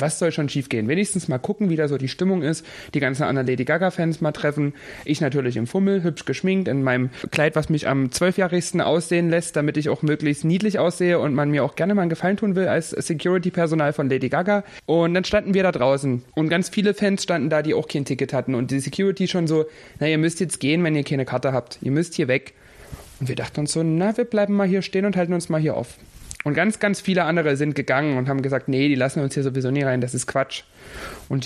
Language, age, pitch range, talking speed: German, 30-49, 135-180 Hz, 255 wpm